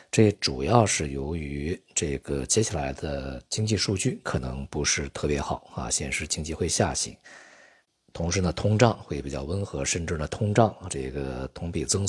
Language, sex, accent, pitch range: Chinese, male, native, 70-95 Hz